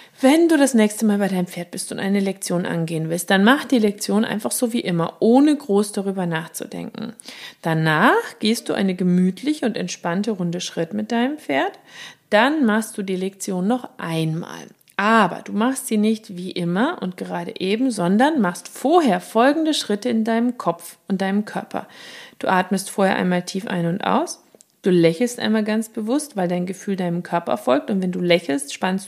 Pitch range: 180-240 Hz